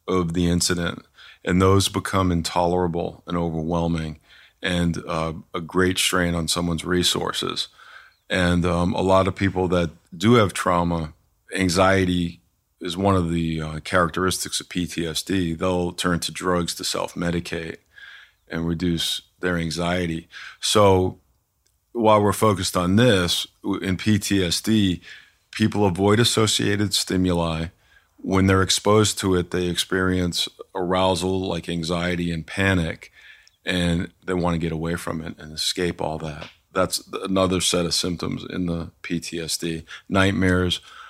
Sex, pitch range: male, 85-95 Hz